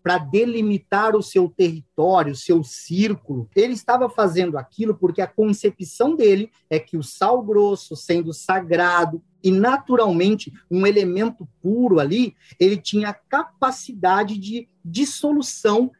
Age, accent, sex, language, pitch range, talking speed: 40-59, Brazilian, male, Portuguese, 185-235 Hz, 130 wpm